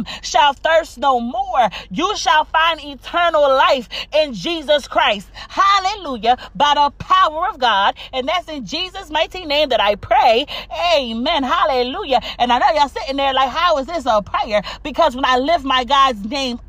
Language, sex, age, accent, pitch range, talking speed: English, female, 30-49, American, 205-305 Hz, 175 wpm